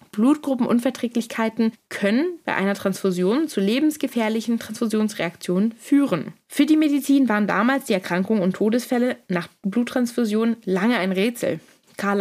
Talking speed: 120 wpm